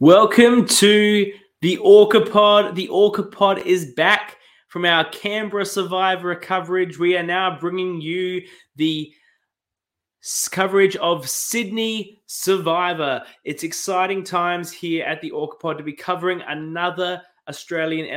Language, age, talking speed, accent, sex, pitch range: English, 20-39, 125 wpm, Australian, male, 150-185 Hz